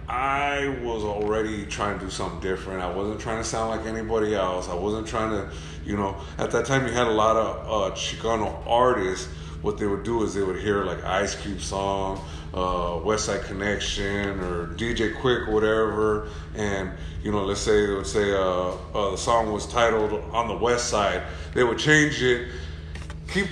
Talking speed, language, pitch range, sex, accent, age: 195 wpm, English, 85-115 Hz, male, American, 30-49